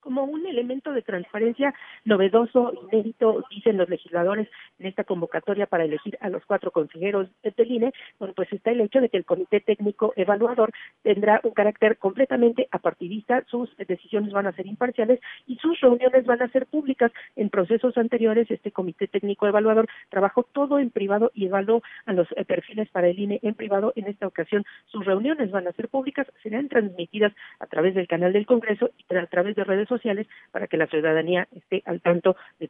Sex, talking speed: female, 185 wpm